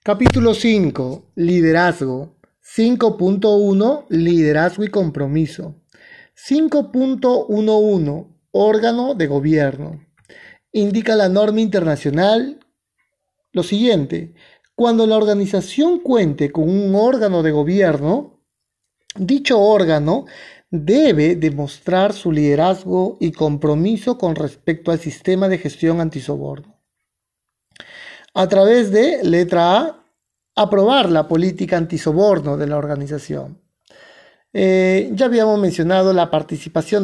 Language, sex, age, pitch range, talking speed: Spanish, male, 30-49, 160-210 Hz, 95 wpm